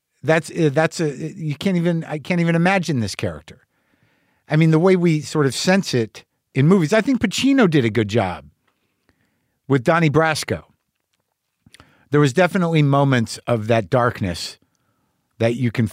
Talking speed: 160 wpm